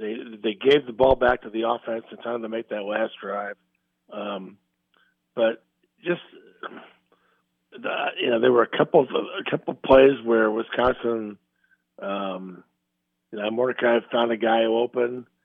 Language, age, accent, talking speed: English, 50-69, American, 170 wpm